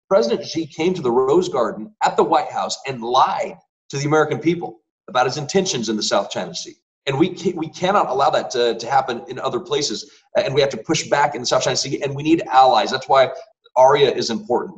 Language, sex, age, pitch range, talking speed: English, male, 30-49, 125-200 Hz, 235 wpm